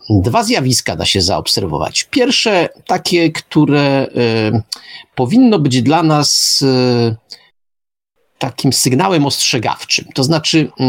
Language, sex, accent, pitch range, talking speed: Polish, male, native, 105-135 Hz, 105 wpm